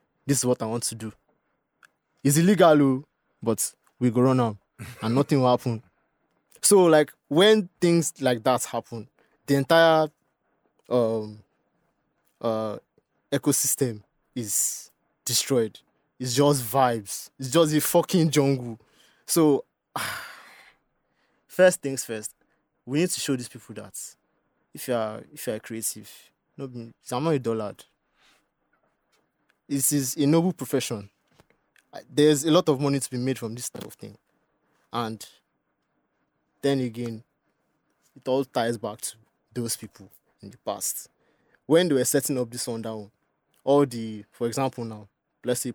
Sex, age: male, 20-39